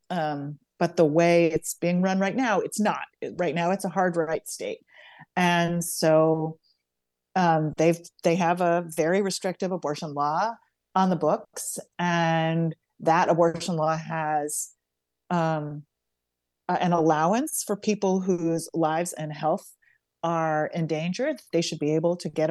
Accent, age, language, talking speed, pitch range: American, 30-49, English, 140 wpm, 160-200 Hz